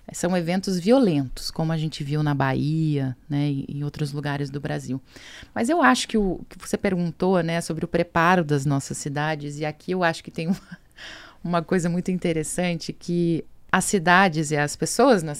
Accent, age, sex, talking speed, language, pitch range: Brazilian, 20-39, female, 190 wpm, Portuguese, 155-195 Hz